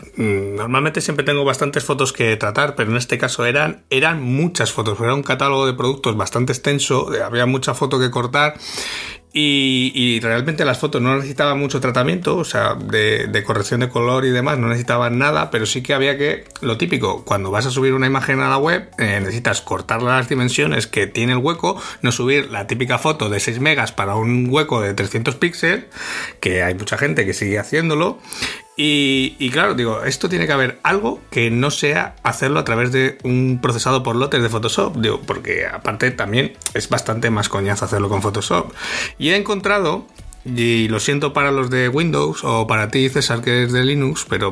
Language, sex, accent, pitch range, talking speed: Spanish, male, Spanish, 115-145 Hz, 195 wpm